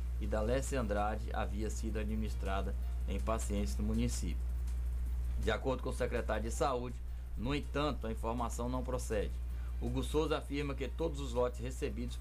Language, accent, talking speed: Portuguese, Brazilian, 155 wpm